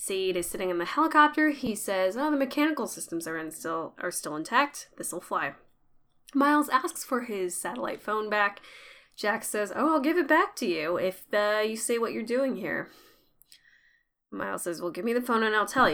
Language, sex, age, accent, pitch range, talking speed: English, female, 10-29, American, 180-265 Hz, 205 wpm